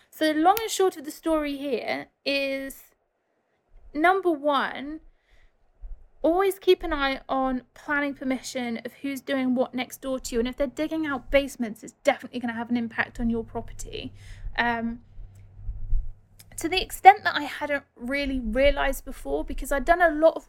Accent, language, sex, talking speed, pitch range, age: British, English, female, 170 wpm, 235-285 Hz, 30-49